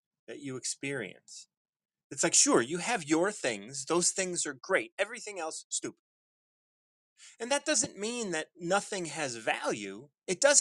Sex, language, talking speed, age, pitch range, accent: male, English, 155 wpm, 30-49, 135-190 Hz, American